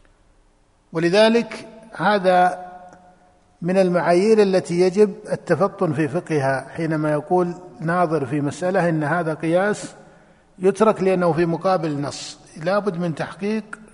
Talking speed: 110 wpm